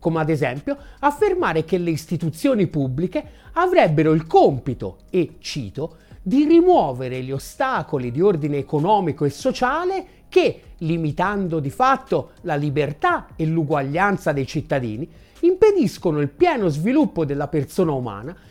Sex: male